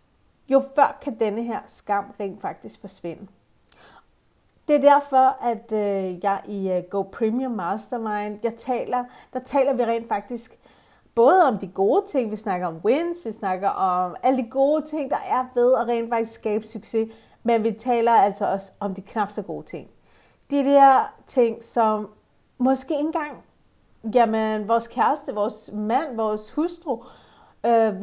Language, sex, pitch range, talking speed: Danish, female, 210-265 Hz, 160 wpm